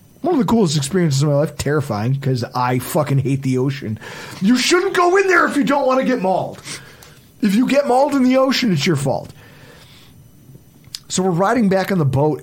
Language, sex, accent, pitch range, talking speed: English, male, American, 135-185 Hz, 210 wpm